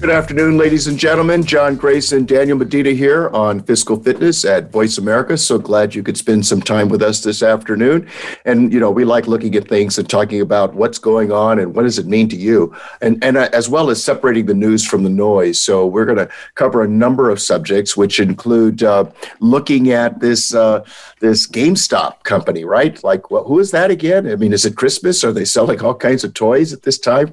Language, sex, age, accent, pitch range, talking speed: English, male, 50-69, American, 110-155 Hz, 220 wpm